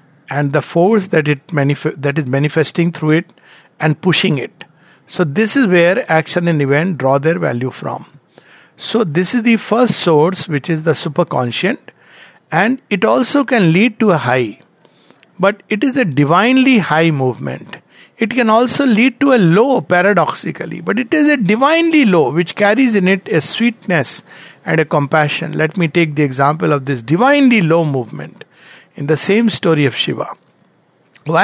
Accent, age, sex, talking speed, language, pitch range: Indian, 60-79, male, 170 wpm, English, 150-210 Hz